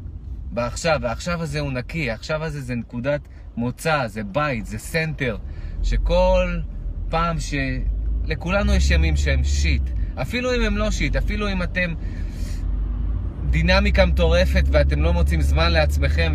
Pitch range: 70-80 Hz